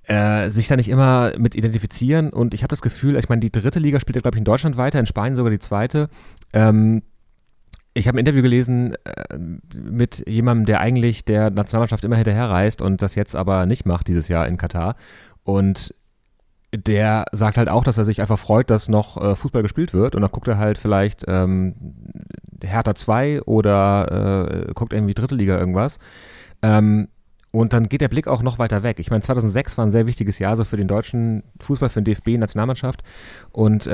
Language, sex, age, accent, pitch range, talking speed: German, male, 30-49, German, 100-120 Hz, 200 wpm